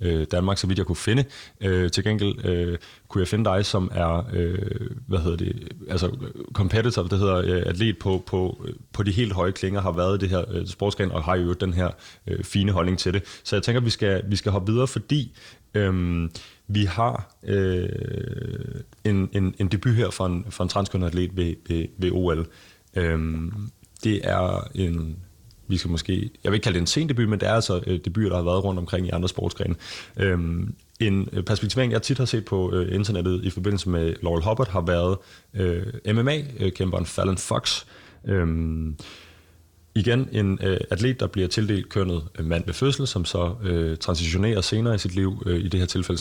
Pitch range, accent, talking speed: 90-105 Hz, native, 200 wpm